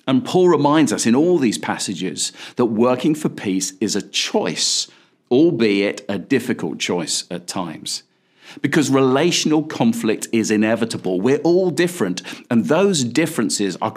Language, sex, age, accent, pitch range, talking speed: English, male, 50-69, British, 100-140 Hz, 140 wpm